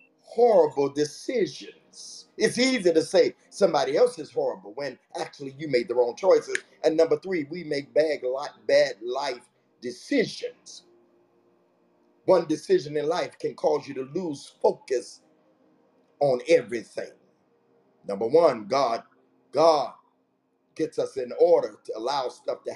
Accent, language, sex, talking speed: American, English, male, 130 wpm